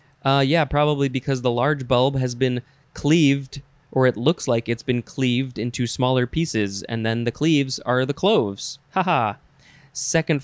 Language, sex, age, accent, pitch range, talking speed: English, male, 20-39, American, 125-150 Hz, 165 wpm